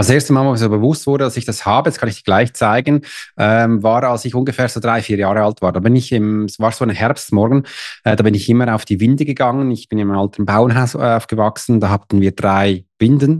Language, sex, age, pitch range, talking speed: German, male, 20-39, 105-130 Hz, 265 wpm